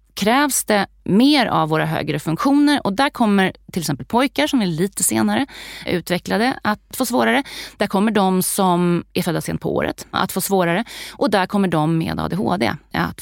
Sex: female